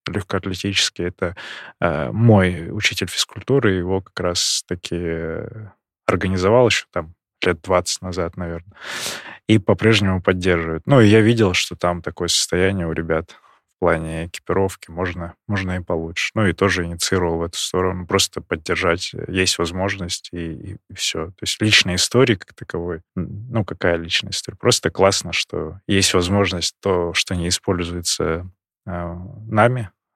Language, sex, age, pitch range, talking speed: Russian, male, 20-39, 90-105 Hz, 145 wpm